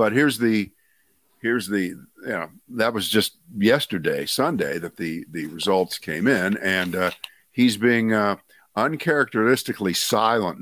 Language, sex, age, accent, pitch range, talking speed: English, male, 50-69, American, 95-115 Hz, 140 wpm